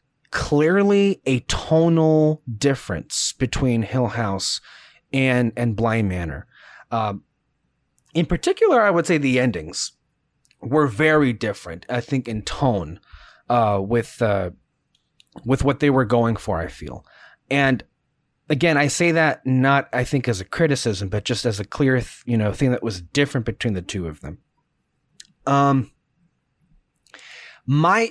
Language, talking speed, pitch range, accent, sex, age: English, 140 wpm, 120-145 Hz, American, male, 30-49